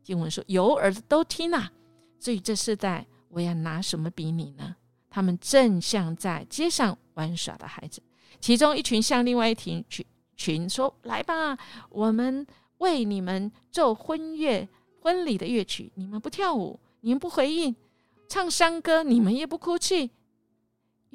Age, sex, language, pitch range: 50-69, female, Chinese, 165-255 Hz